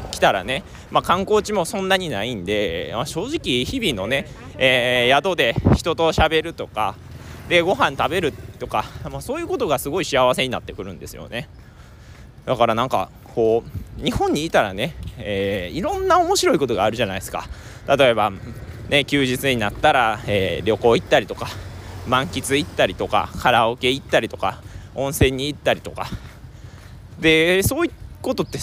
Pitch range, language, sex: 110-160 Hz, Japanese, male